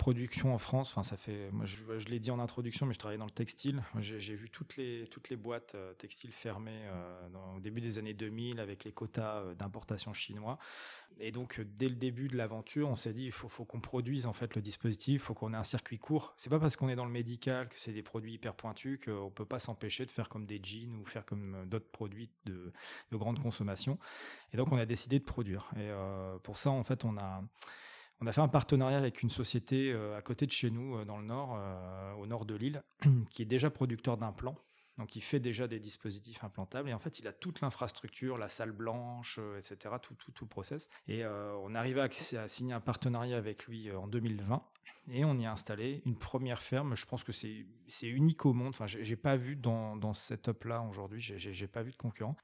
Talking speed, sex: 245 wpm, male